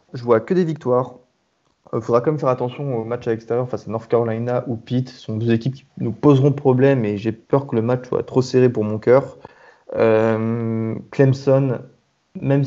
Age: 20-39